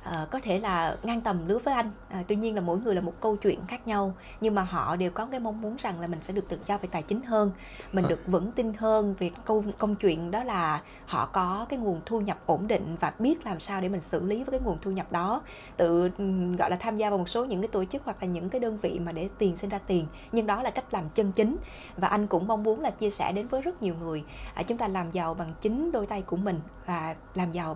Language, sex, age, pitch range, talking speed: Vietnamese, female, 20-39, 180-220 Hz, 275 wpm